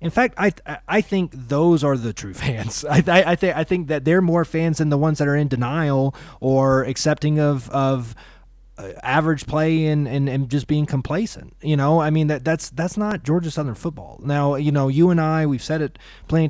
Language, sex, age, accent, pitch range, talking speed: English, male, 20-39, American, 120-150 Hz, 225 wpm